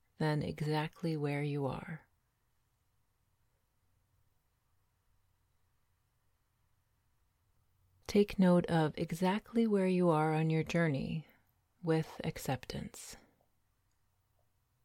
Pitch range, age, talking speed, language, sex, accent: 100-155 Hz, 30-49, 70 wpm, English, female, American